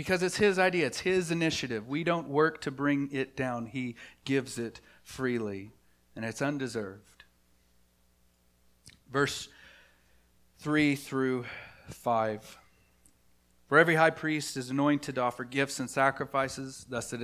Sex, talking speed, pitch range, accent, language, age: male, 130 wpm, 115-150 Hz, American, English, 40-59